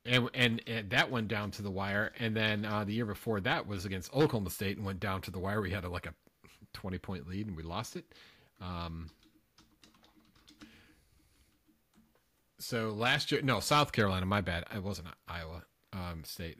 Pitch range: 90-115 Hz